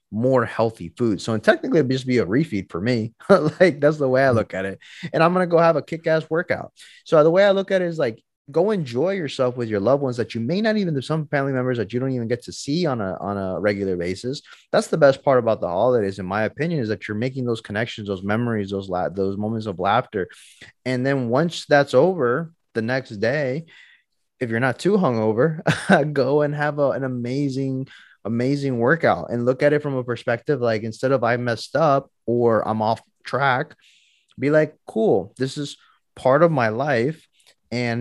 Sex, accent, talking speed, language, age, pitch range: male, American, 220 wpm, English, 20-39, 110-150 Hz